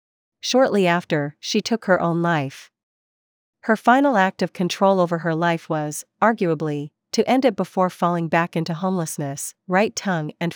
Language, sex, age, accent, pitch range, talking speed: English, female, 40-59, American, 160-200 Hz, 160 wpm